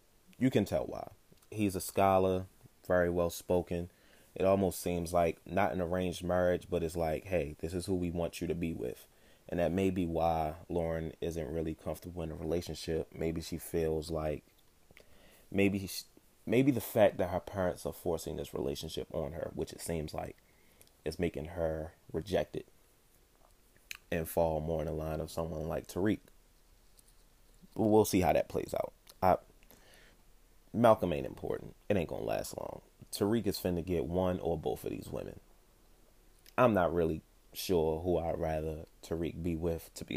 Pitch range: 80-95 Hz